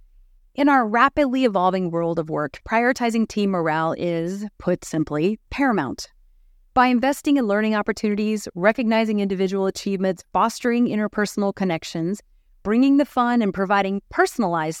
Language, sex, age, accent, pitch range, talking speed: English, female, 30-49, American, 180-245 Hz, 125 wpm